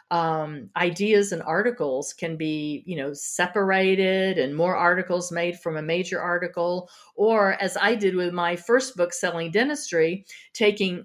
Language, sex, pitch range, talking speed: English, female, 165-205 Hz, 150 wpm